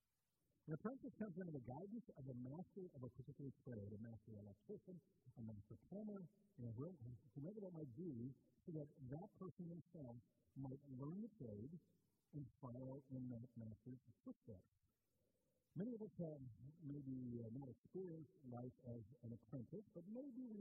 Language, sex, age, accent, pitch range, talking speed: English, male, 50-69, American, 115-160 Hz, 155 wpm